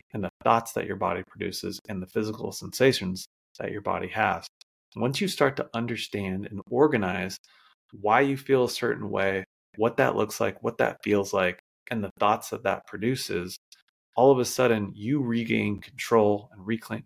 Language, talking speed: English, 180 wpm